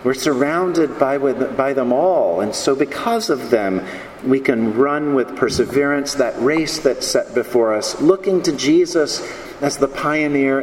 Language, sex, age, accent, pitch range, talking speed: English, male, 50-69, American, 130-160 Hz, 150 wpm